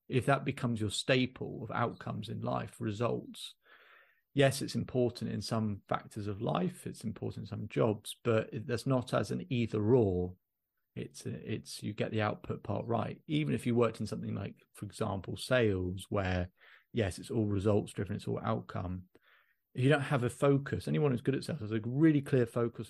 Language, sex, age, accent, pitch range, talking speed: English, male, 30-49, British, 105-130 Hz, 190 wpm